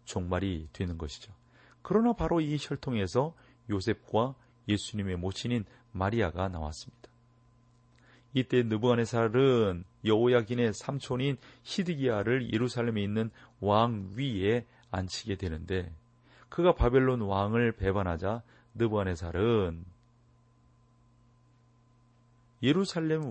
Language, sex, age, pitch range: Korean, male, 30-49, 95-125 Hz